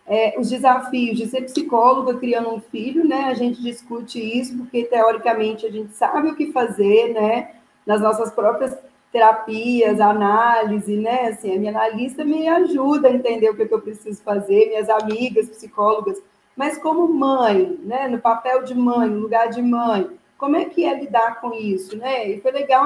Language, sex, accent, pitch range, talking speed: Portuguese, female, Brazilian, 220-270 Hz, 185 wpm